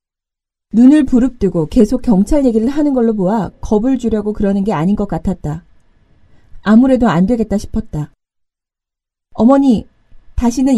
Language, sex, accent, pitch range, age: Korean, female, native, 195-255 Hz, 30-49